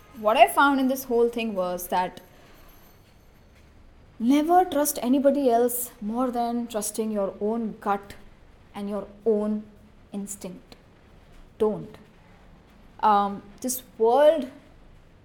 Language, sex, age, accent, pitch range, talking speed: English, female, 20-39, Indian, 210-255 Hz, 105 wpm